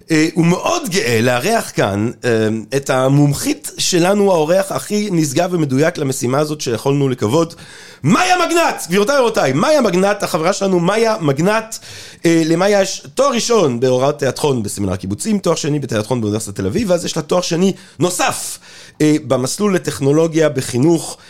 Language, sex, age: Hebrew, male, 30-49